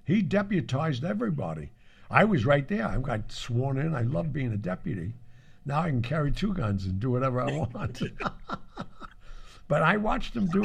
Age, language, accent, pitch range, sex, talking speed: 60-79, English, American, 105-145 Hz, male, 180 wpm